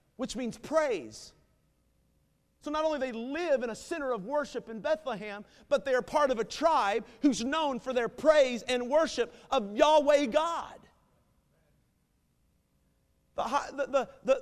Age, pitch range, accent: 40-59, 225-290 Hz, American